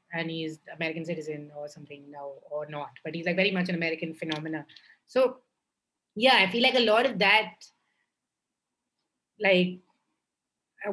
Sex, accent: female, Indian